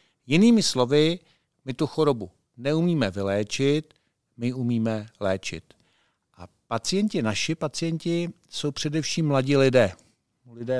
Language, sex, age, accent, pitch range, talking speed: Czech, male, 50-69, native, 125-155 Hz, 105 wpm